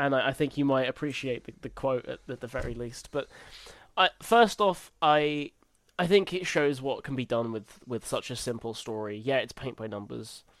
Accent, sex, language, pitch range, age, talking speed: British, male, English, 105-135 Hz, 10-29, 205 wpm